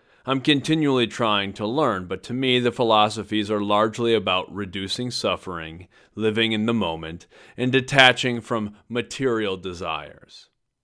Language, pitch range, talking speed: English, 95-125 Hz, 135 wpm